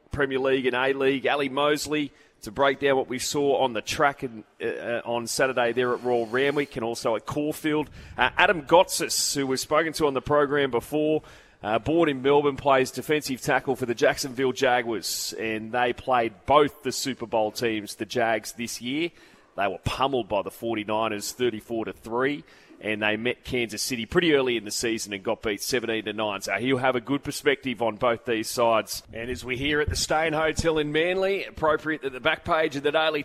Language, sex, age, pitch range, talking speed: English, male, 30-49, 120-150 Hz, 200 wpm